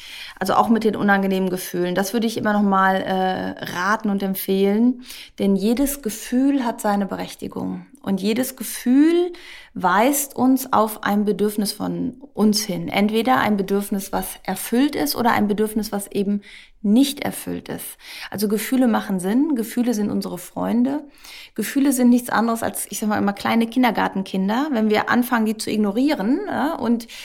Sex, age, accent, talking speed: female, 30-49, German, 160 wpm